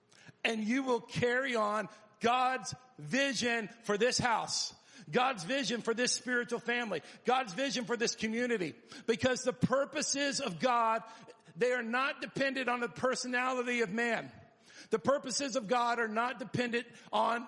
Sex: male